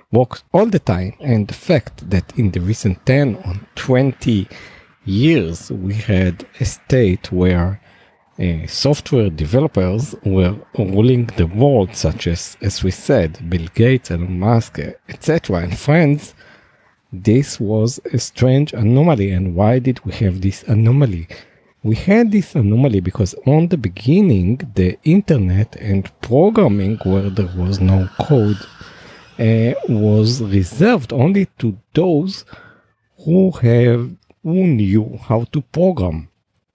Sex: male